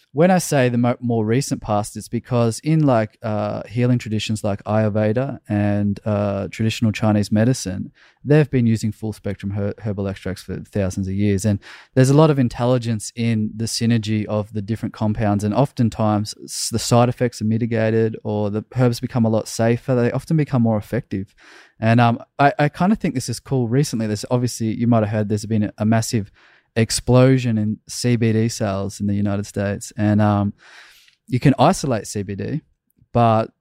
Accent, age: Australian, 20-39